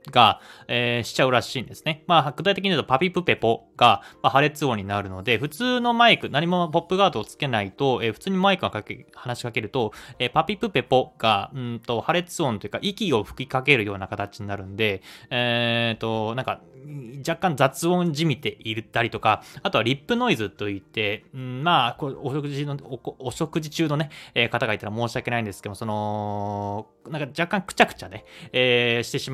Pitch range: 115-165 Hz